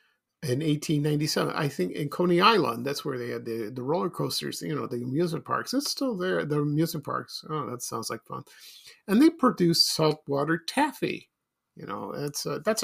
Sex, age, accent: male, 50-69, American